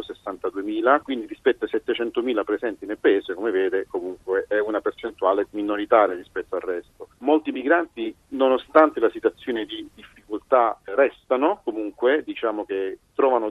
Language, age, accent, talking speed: Italian, 40-59, native, 130 wpm